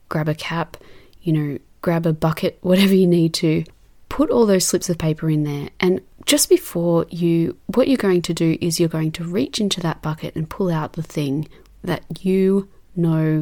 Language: English